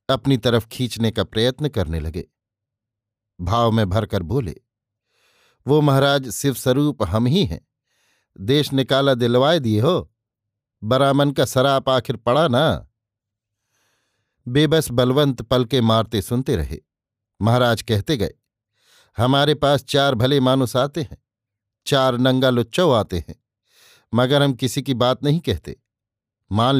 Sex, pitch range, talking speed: male, 110-145 Hz, 130 wpm